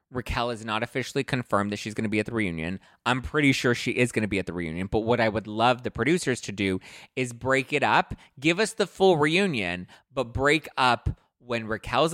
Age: 20-39